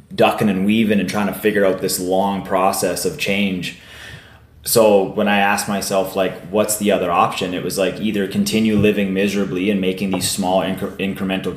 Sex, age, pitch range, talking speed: male, 20-39, 95-110 Hz, 180 wpm